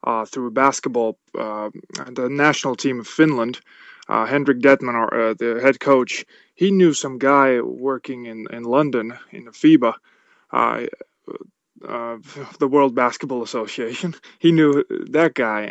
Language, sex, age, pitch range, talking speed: English, male, 20-39, 125-150 Hz, 140 wpm